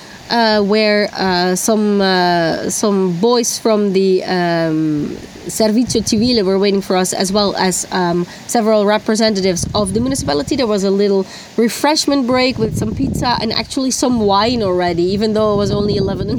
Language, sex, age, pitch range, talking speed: Italian, female, 20-39, 185-230 Hz, 170 wpm